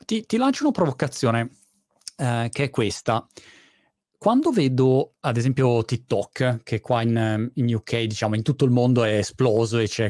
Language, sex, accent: Italian, male, native